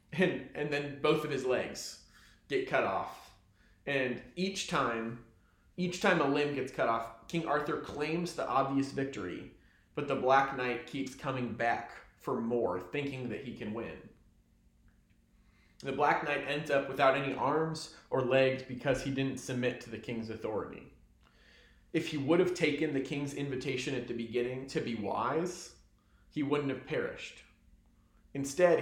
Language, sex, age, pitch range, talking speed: English, male, 30-49, 115-145 Hz, 155 wpm